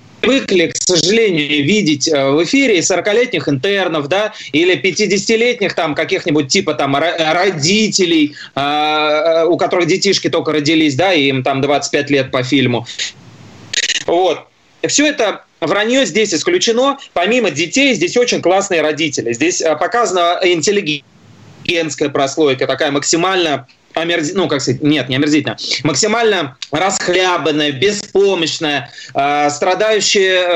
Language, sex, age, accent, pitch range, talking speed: Russian, male, 30-49, native, 155-195 Hz, 120 wpm